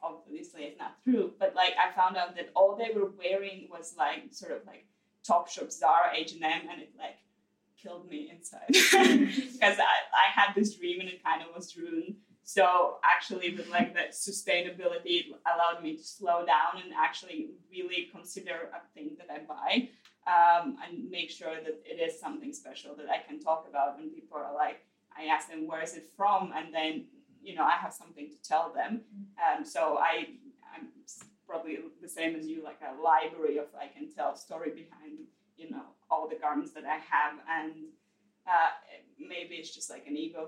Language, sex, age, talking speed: English, female, 20-39, 195 wpm